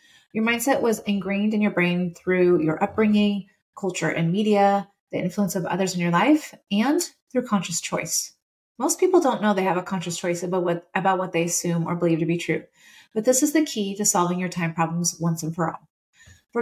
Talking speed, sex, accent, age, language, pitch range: 215 wpm, female, American, 30-49, English, 175-215 Hz